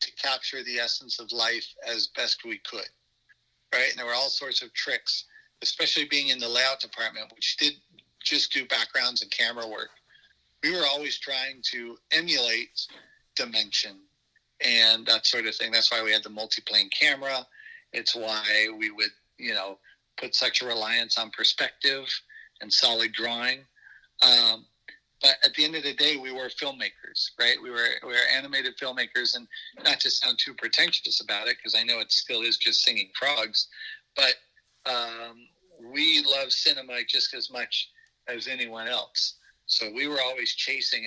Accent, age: American, 40-59